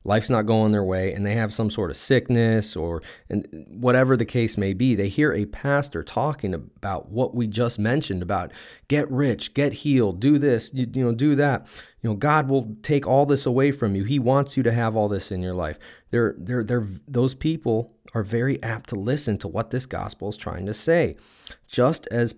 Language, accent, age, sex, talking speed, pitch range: English, American, 30-49, male, 210 wpm, 100-130 Hz